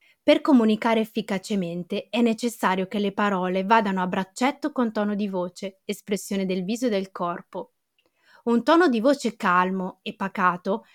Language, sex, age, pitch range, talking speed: Italian, female, 20-39, 190-250 Hz, 155 wpm